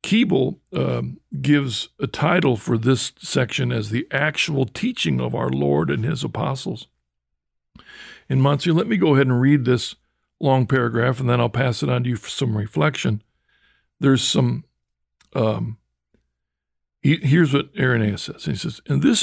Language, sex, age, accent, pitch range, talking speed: English, male, 60-79, American, 110-145 Hz, 155 wpm